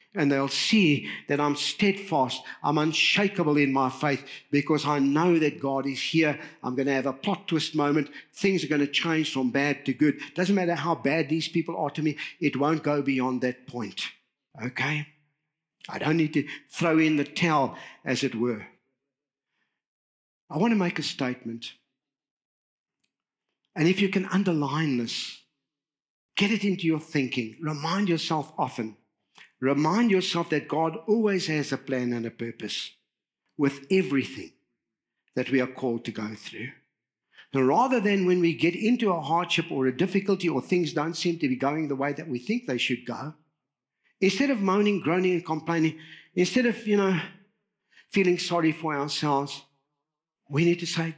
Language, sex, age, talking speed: English, male, 60-79, 170 wpm